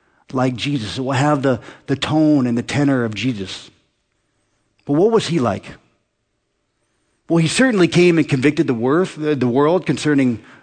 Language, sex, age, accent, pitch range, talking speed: English, male, 50-69, American, 130-175 Hz, 165 wpm